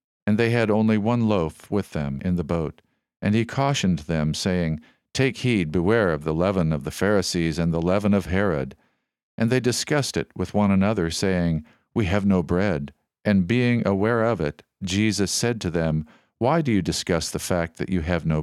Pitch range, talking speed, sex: 90-110 Hz, 200 wpm, male